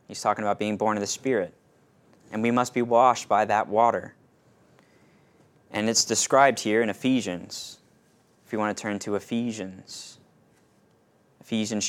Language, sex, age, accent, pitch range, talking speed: English, male, 20-39, American, 105-120 Hz, 165 wpm